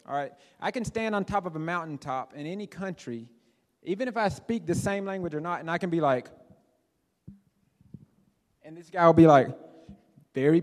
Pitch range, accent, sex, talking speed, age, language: 155-200 Hz, American, male, 190 wpm, 30-49, English